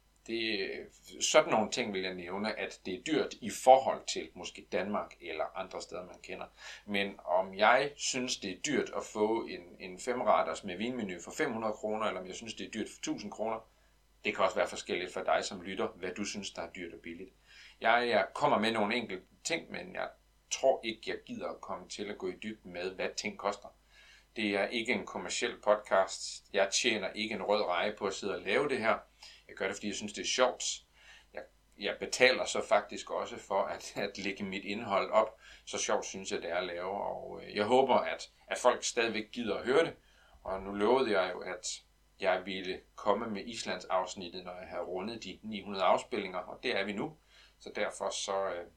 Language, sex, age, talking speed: Danish, male, 40-59, 215 wpm